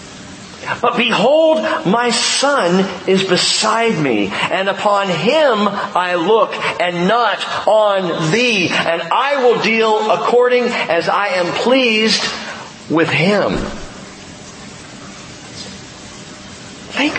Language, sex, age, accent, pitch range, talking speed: English, male, 40-59, American, 170-240 Hz, 100 wpm